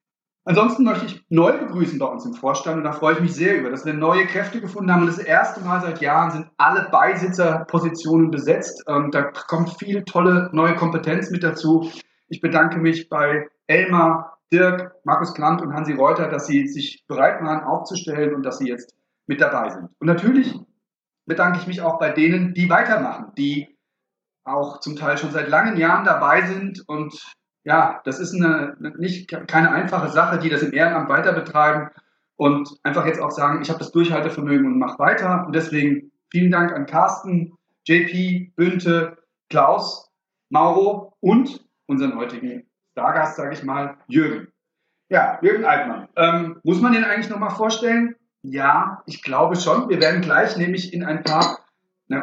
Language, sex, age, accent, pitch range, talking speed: German, male, 40-59, German, 155-190 Hz, 170 wpm